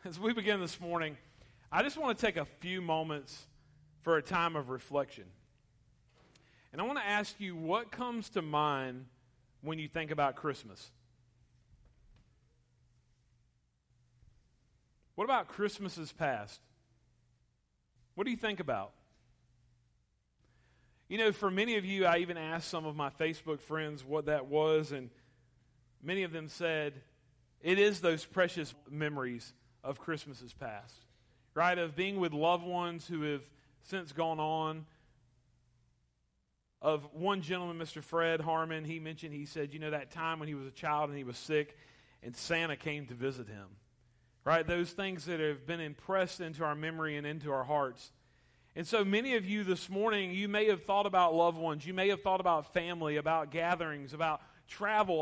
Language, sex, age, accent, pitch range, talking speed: English, male, 40-59, American, 125-175 Hz, 165 wpm